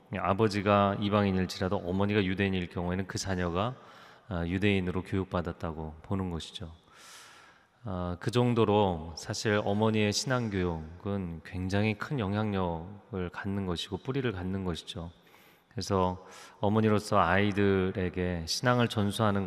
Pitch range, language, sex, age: 90-110 Hz, Korean, male, 30-49